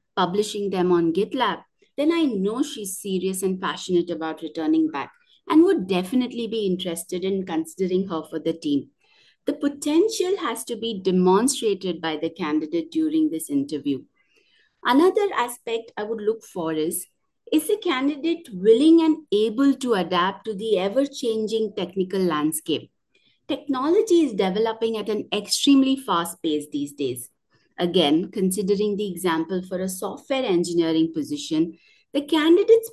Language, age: English, 50-69